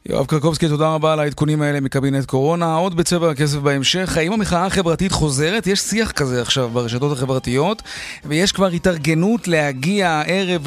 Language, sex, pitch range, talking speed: Hebrew, male, 145-185 Hz, 155 wpm